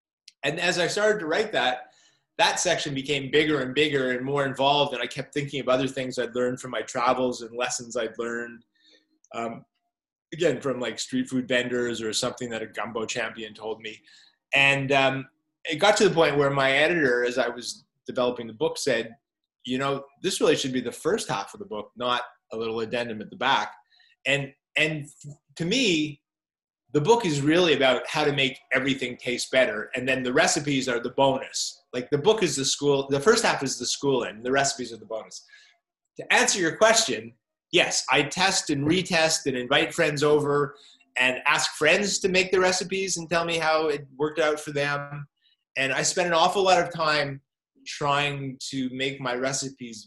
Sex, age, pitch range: male, 20-39, 125-155 Hz